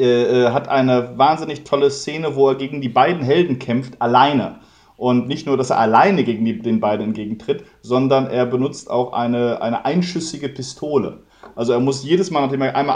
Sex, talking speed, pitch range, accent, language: male, 185 wpm, 125-155 Hz, German, German